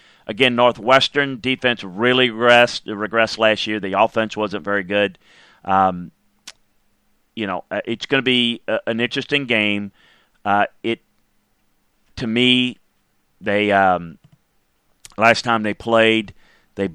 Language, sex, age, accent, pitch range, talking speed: English, male, 40-59, American, 100-115 Hz, 125 wpm